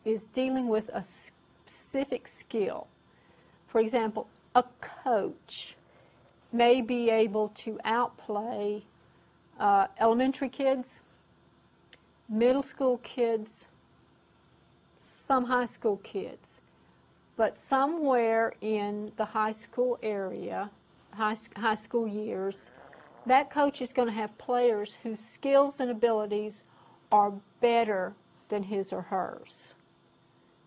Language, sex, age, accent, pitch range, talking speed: English, female, 50-69, American, 205-245 Hz, 105 wpm